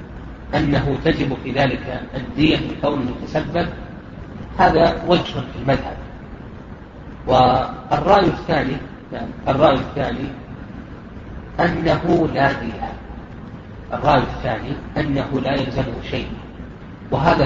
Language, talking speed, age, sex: Arabic, 100 wpm, 40-59, male